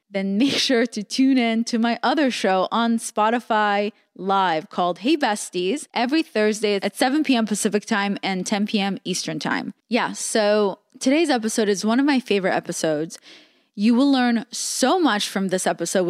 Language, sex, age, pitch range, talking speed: English, female, 20-39, 190-245 Hz, 170 wpm